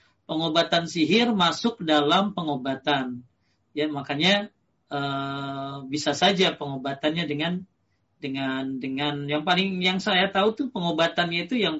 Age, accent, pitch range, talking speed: 40-59, native, 140-175 Hz, 120 wpm